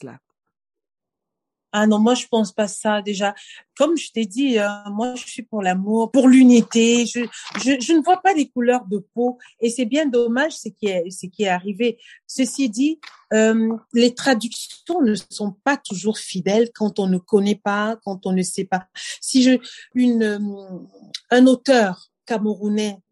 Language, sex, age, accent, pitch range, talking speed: French, female, 50-69, French, 195-245 Hz, 175 wpm